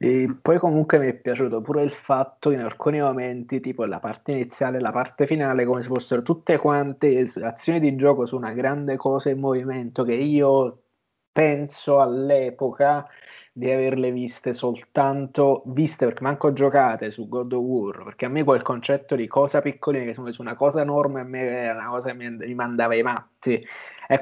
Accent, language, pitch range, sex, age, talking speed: native, Italian, 125-140 Hz, male, 20-39, 180 wpm